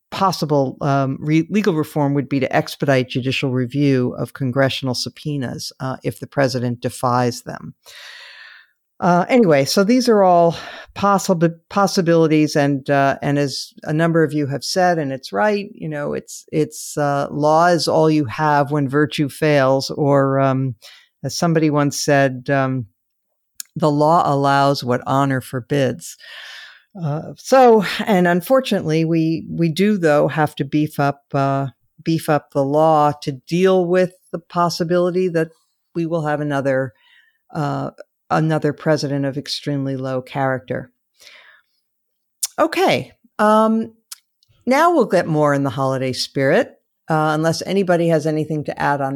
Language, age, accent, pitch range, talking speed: English, 50-69, American, 140-180 Hz, 145 wpm